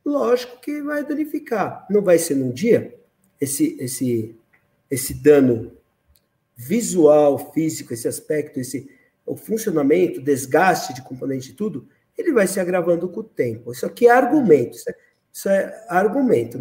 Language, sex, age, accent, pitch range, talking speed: Portuguese, male, 50-69, Brazilian, 150-245 Hz, 150 wpm